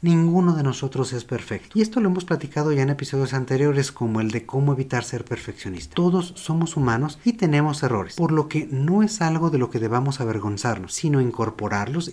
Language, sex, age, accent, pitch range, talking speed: Spanish, male, 40-59, Mexican, 125-165 Hz, 200 wpm